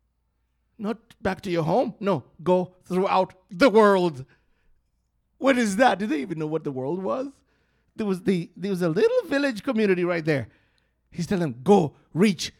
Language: English